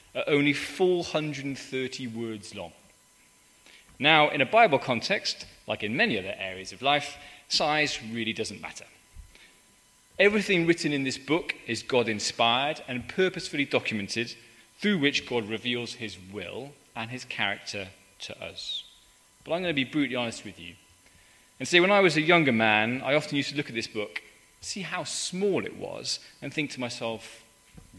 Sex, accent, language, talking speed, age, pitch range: male, British, English, 165 wpm, 20-39, 110-145 Hz